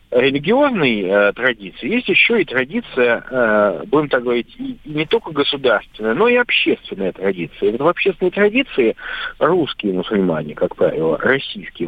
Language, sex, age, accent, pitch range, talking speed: Russian, male, 50-69, native, 120-185 Hz, 135 wpm